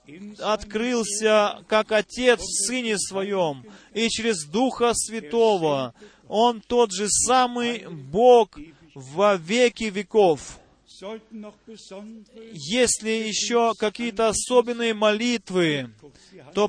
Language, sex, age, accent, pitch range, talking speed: Russian, male, 30-49, native, 200-240 Hz, 85 wpm